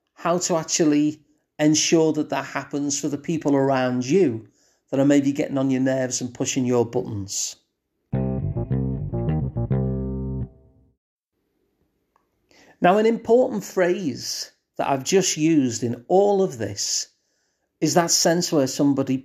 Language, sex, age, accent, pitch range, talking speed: English, male, 40-59, British, 130-165 Hz, 125 wpm